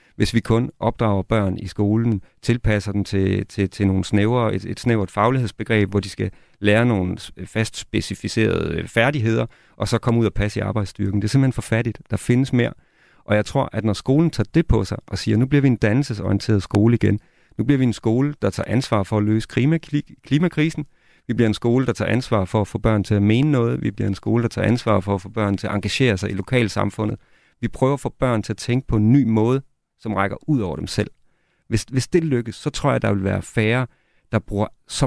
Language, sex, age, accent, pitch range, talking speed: Danish, male, 40-59, native, 105-125 Hz, 235 wpm